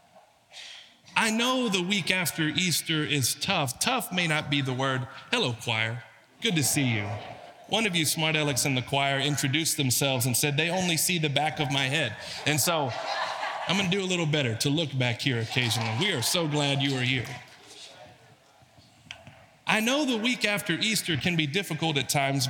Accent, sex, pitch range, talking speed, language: American, male, 130-175 Hz, 190 wpm, English